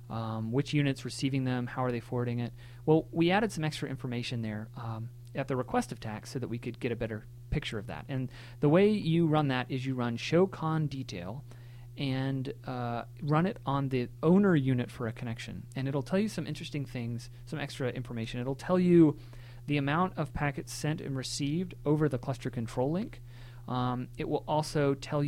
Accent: American